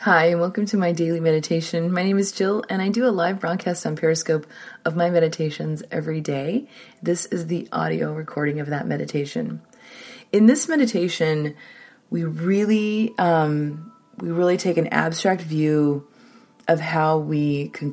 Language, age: English, 30-49